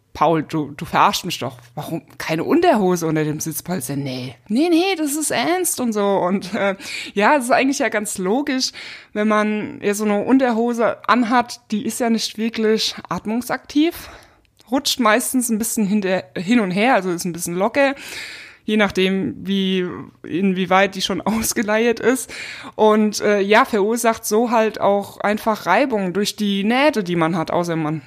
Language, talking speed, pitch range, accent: German, 170 wpm, 180-225 Hz, German